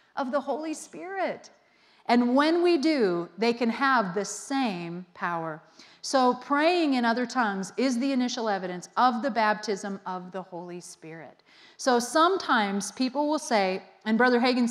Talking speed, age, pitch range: 155 wpm, 40-59, 195-260 Hz